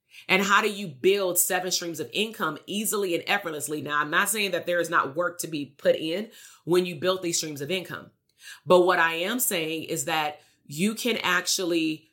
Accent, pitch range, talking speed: American, 165-200 Hz, 210 wpm